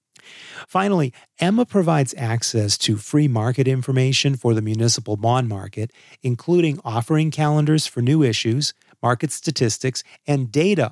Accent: American